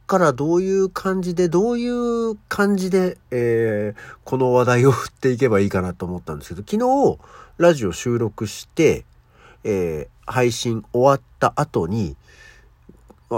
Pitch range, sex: 90-150 Hz, male